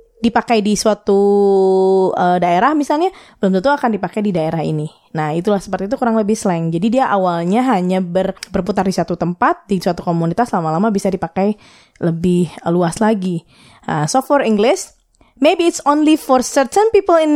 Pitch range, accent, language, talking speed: 180-255 Hz, native, Indonesian, 170 wpm